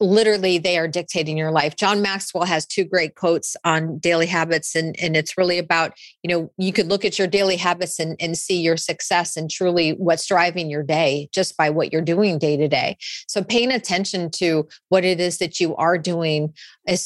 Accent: American